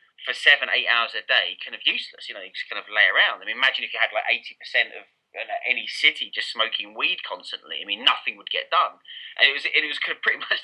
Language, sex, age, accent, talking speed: English, male, 30-49, British, 265 wpm